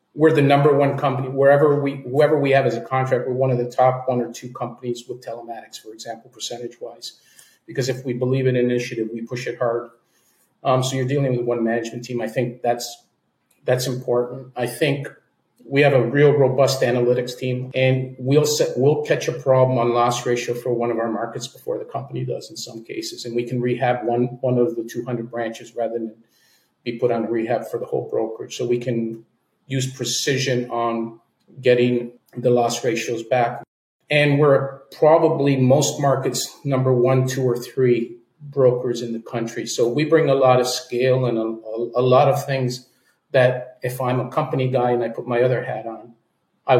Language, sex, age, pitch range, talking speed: English, male, 40-59, 120-135 Hz, 200 wpm